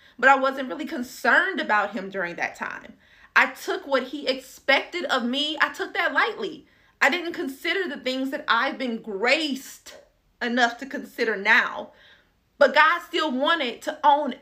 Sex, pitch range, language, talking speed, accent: female, 240-350 Hz, English, 165 wpm, American